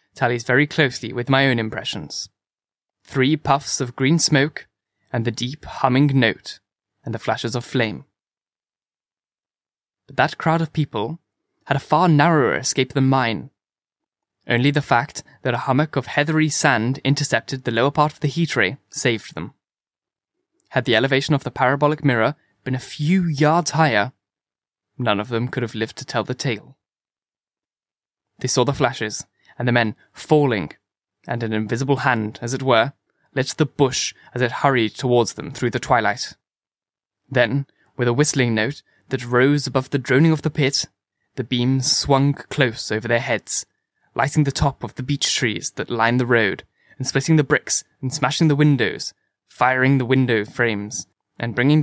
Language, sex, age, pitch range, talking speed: English, male, 10-29, 120-145 Hz, 170 wpm